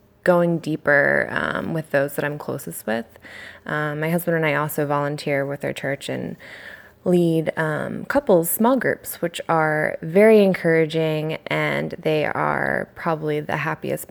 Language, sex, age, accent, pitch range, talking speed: English, female, 20-39, American, 150-180 Hz, 150 wpm